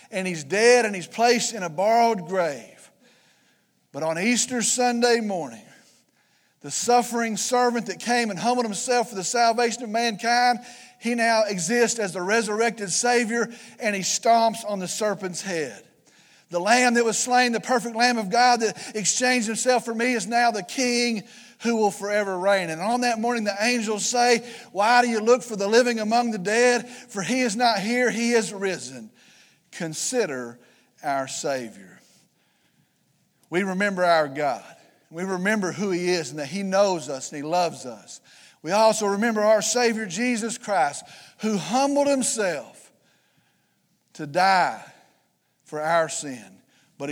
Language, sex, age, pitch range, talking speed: English, male, 40-59, 180-240 Hz, 160 wpm